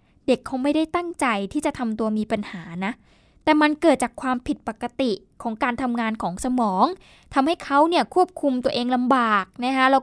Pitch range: 225-275 Hz